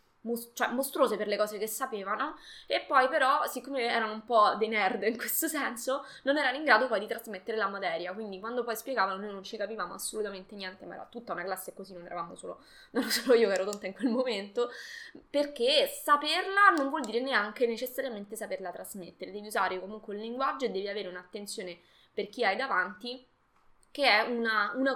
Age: 20-39